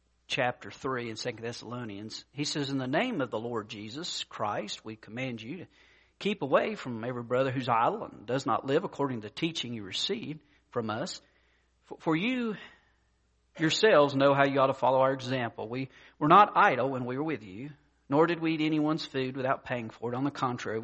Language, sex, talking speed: English, male, 205 wpm